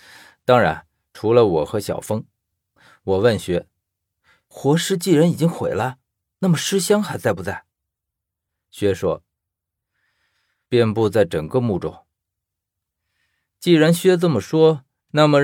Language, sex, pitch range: Chinese, male, 100-145 Hz